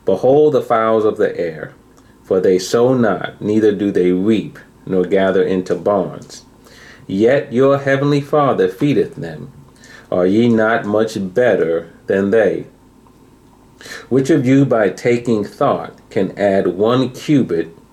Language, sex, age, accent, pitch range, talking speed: English, male, 40-59, American, 105-145 Hz, 135 wpm